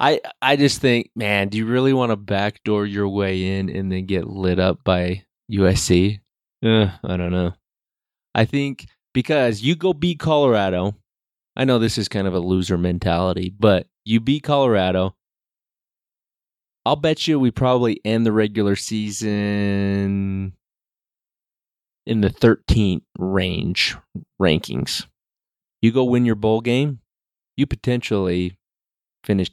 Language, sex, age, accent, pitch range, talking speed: English, male, 20-39, American, 95-130 Hz, 140 wpm